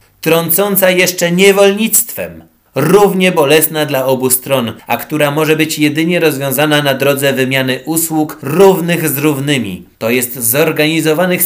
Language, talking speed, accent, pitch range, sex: Polish, 125 wpm, native, 125-155 Hz, male